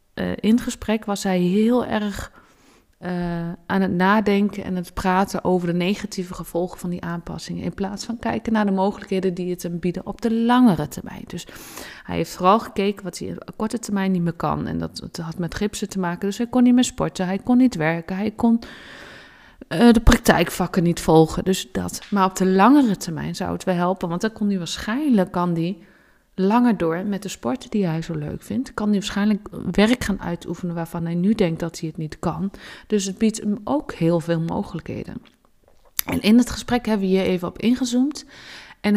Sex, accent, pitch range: female, Dutch, 175-215 Hz